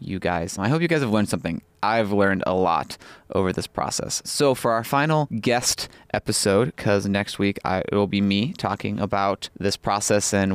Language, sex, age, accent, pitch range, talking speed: English, male, 20-39, American, 100-115 Hz, 195 wpm